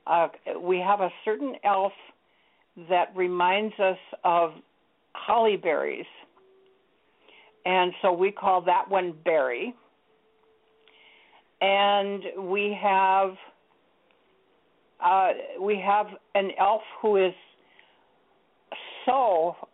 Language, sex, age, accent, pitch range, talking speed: English, female, 60-79, American, 170-205 Hz, 90 wpm